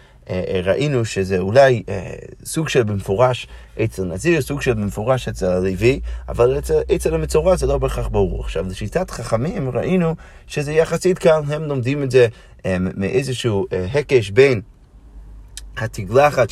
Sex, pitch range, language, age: male, 105-145 Hz, Hebrew, 30-49